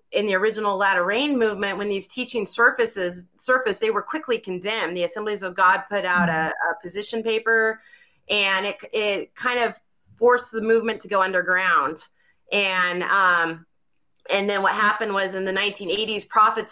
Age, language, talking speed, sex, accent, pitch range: 30-49, English, 170 wpm, female, American, 180-215 Hz